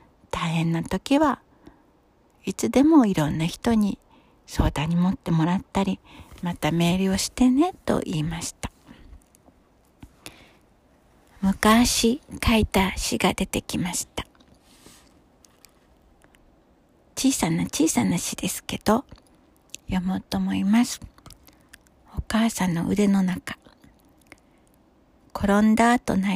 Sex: female